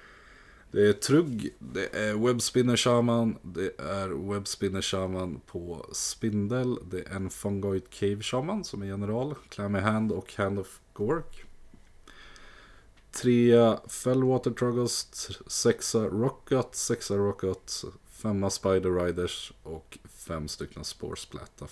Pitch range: 95-120 Hz